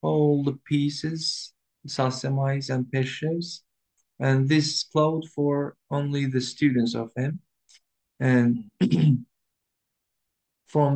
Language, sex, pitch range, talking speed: Arabic, male, 125-150 Hz, 95 wpm